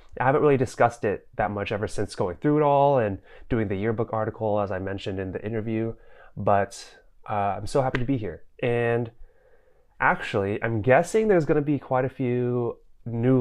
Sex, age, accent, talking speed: male, 20-39, American, 195 wpm